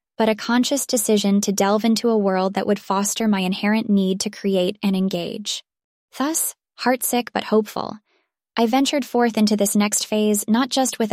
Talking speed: 180 wpm